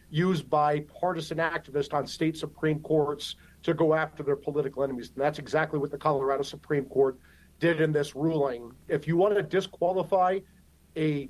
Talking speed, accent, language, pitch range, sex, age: 170 wpm, American, English, 150-180 Hz, male, 50-69